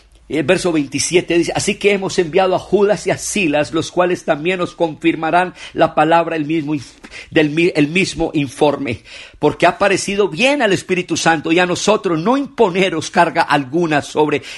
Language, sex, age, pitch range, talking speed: Spanish, male, 50-69, 155-185 Hz, 150 wpm